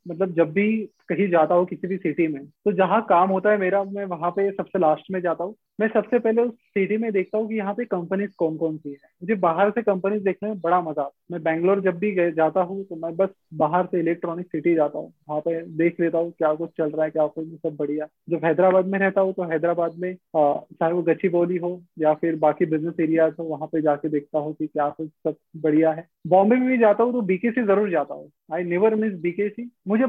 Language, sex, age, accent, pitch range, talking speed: Hindi, male, 20-39, native, 165-195 Hz, 245 wpm